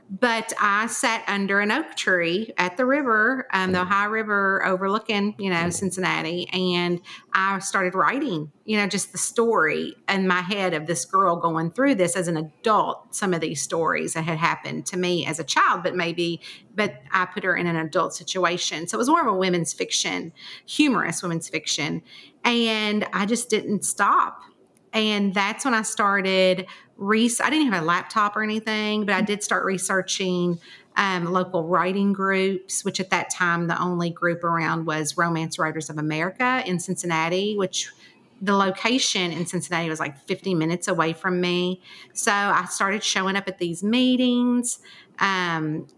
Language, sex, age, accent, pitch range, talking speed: English, female, 40-59, American, 175-210 Hz, 175 wpm